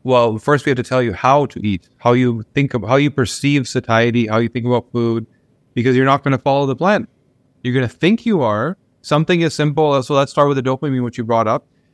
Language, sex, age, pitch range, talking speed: English, male, 30-49, 120-140 Hz, 250 wpm